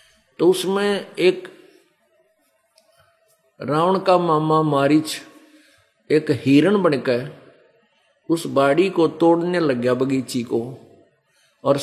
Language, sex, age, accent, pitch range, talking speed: Hindi, male, 50-69, native, 150-190 Hz, 95 wpm